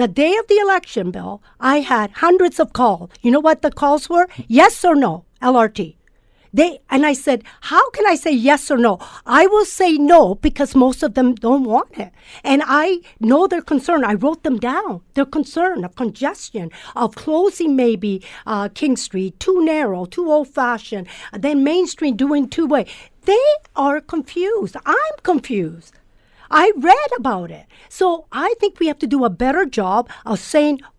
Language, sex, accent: English, female, American